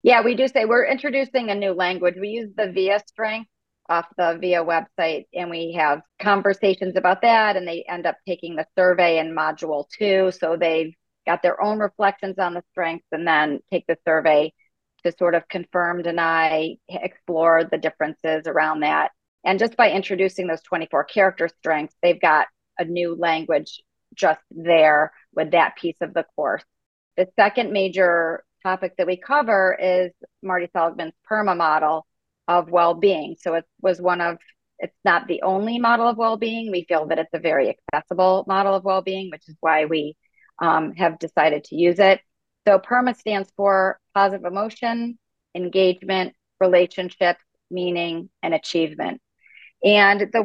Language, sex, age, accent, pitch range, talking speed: English, female, 40-59, American, 165-200 Hz, 165 wpm